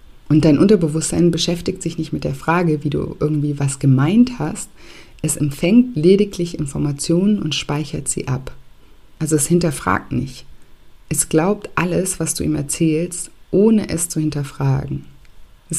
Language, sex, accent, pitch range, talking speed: German, female, German, 140-170 Hz, 150 wpm